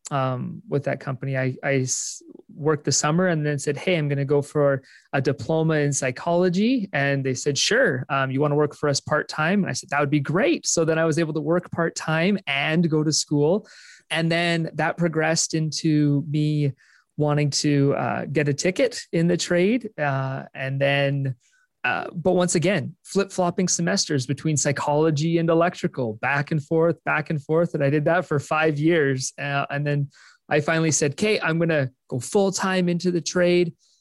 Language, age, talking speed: English, 30-49, 190 wpm